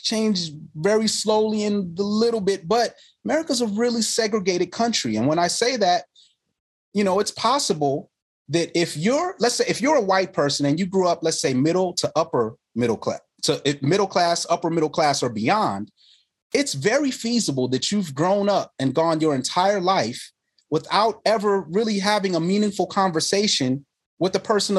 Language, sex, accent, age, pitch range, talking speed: English, male, American, 30-49, 150-205 Hz, 175 wpm